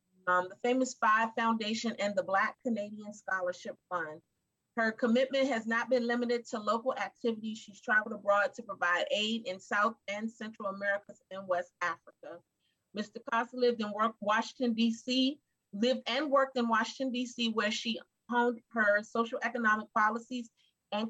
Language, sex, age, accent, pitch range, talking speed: English, female, 30-49, American, 200-240 Hz, 160 wpm